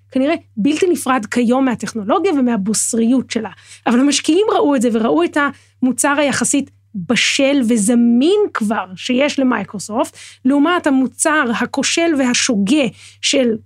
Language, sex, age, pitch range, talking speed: Hebrew, female, 20-39, 225-280 Hz, 115 wpm